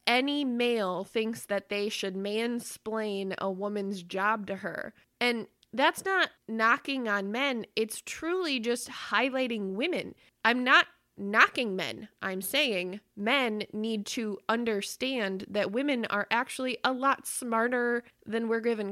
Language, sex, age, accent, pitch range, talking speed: English, female, 20-39, American, 200-250 Hz, 135 wpm